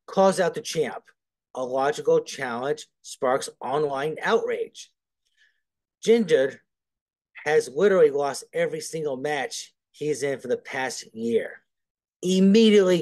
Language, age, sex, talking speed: English, 30-49, male, 110 wpm